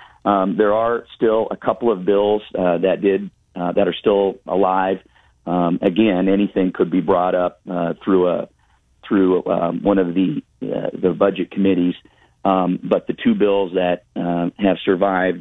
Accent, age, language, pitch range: American, 40-59, English, 90-95 Hz